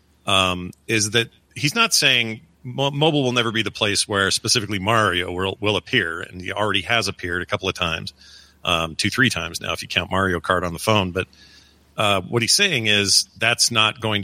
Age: 40-59